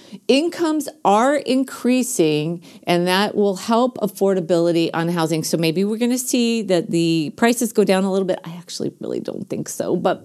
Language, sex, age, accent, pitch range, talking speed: English, female, 40-59, American, 175-240 Hz, 180 wpm